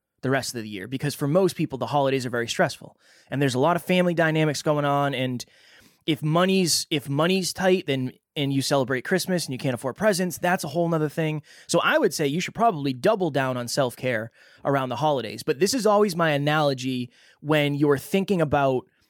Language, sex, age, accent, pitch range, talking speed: English, male, 20-39, American, 135-170 Hz, 215 wpm